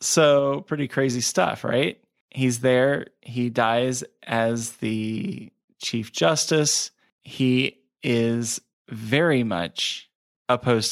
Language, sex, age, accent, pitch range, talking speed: English, male, 20-39, American, 110-125 Hz, 100 wpm